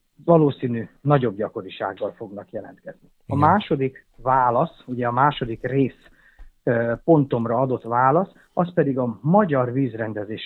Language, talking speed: Hungarian, 115 wpm